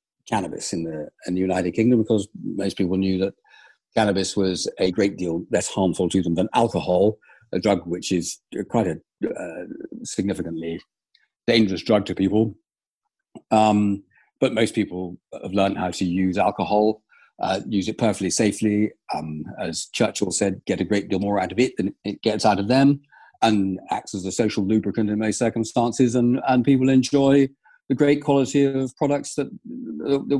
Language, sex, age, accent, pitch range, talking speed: English, male, 50-69, British, 100-135 Hz, 170 wpm